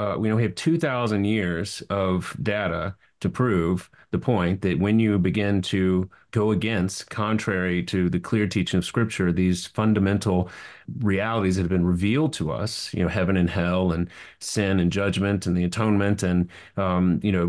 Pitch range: 95-110 Hz